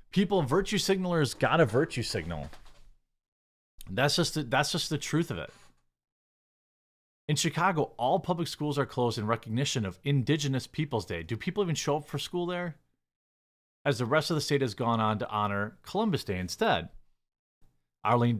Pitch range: 110-150 Hz